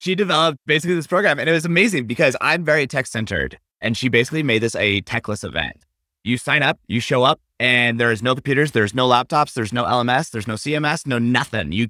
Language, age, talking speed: English, 30-49, 220 wpm